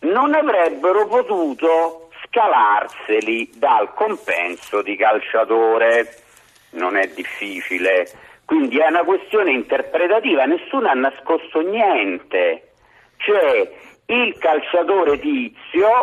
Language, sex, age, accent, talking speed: Italian, male, 50-69, native, 90 wpm